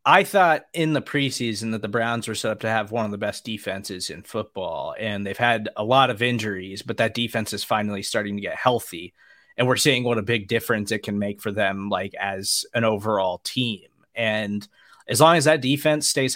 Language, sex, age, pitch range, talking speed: English, male, 20-39, 110-140 Hz, 220 wpm